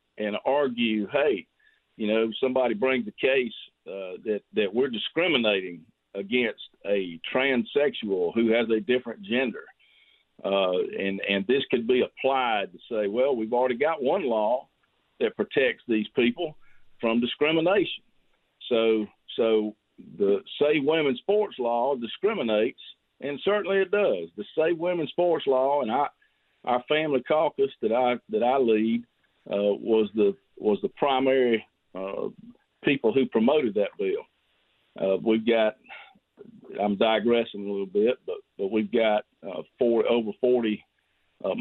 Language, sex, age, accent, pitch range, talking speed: English, male, 50-69, American, 105-135 Hz, 145 wpm